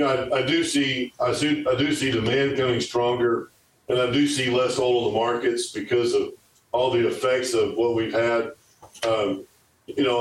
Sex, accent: male, American